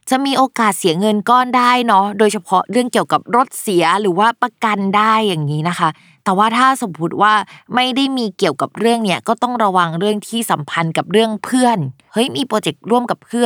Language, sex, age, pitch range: Thai, female, 20-39, 170-230 Hz